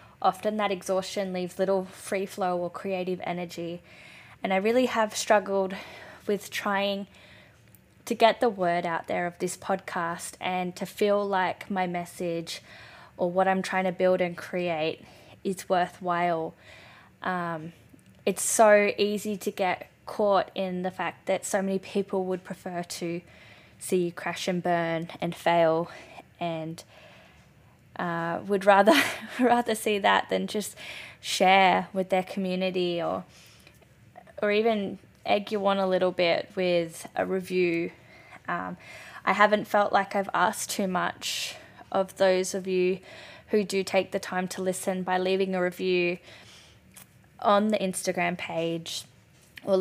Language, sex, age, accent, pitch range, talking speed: English, female, 10-29, Australian, 175-200 Hz, 145 wpm